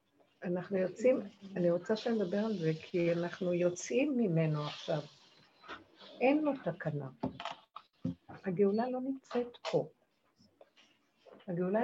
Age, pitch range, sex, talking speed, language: 50-69, 175-225 Hz, female, 105 wpm, Hebrew